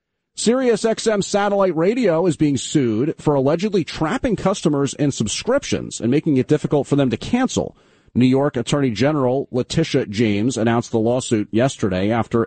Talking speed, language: 155 wpm, English